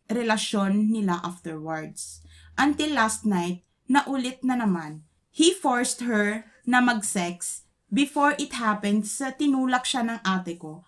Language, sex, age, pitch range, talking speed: Filipino, female, 20-39, 185-265 Hz, 125 wpm